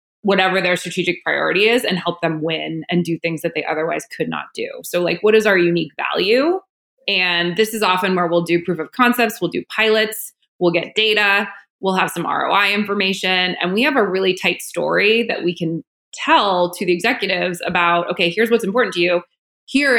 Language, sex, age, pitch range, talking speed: English, female, 20-39, 170-210 Hz, 205 wpm